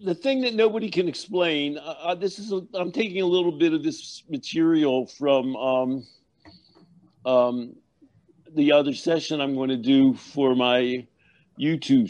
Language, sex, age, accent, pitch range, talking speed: English, male, 50-69, American, 135-180 Hz, 155 wpm